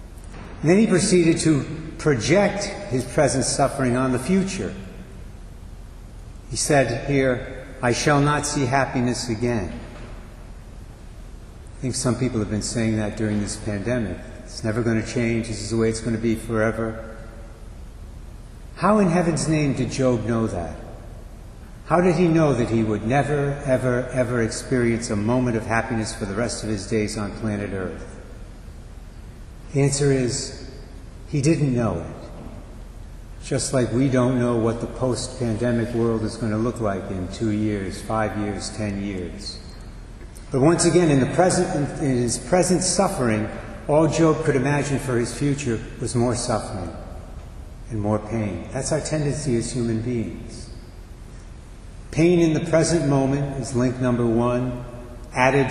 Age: 60-79